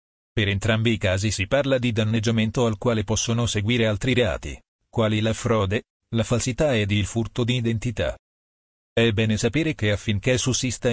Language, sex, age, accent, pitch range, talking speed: Italian, male, 40-59, native, 105-120 Hz, 165 wpm